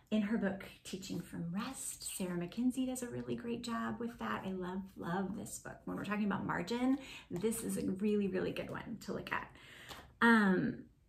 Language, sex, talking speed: English, female, 195 wpm